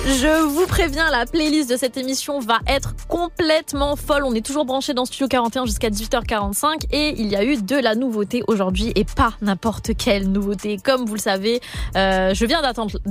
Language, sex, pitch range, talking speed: French, female, 200-265 Hz, 195 wpm